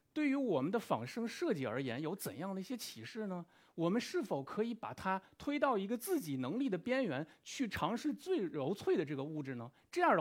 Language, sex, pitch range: Chinese, male, 145-235 Hz